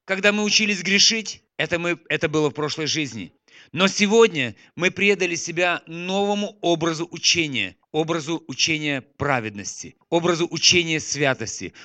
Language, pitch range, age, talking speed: Russian, 145-180 Hz, 40-59, 120 wpm